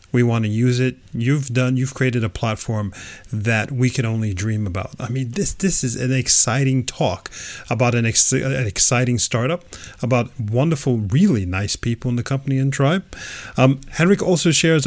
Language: English